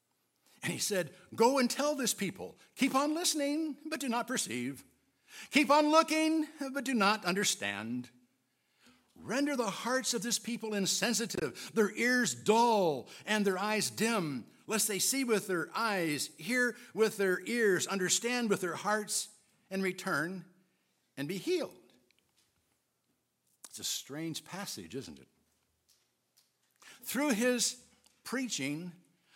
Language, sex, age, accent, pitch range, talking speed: English, male, 60-79, American, 185-250 Hz, 130 wpm